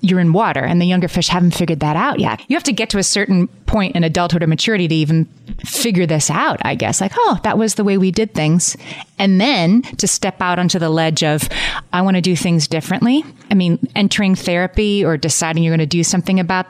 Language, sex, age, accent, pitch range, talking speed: English, female, 30-49, American, 160-195 Hz, 240 wpm